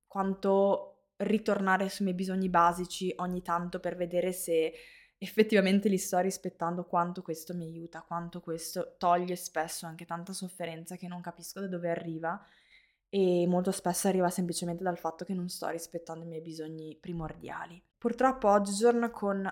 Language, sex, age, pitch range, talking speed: Italian, female, 20-39, 175-195 Hz, 155 wpm